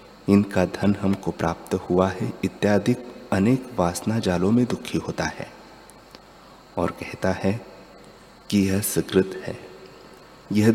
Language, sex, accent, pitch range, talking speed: Hindi, male, native, 95-120 Hz, 125 wpm